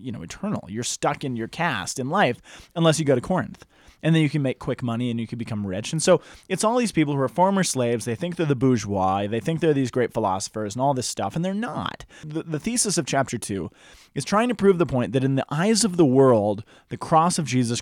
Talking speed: 265 wpm